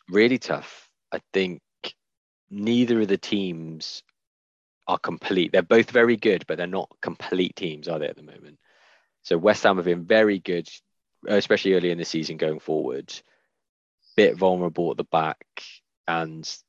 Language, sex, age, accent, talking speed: English, male, 20-39, British, 160 wpm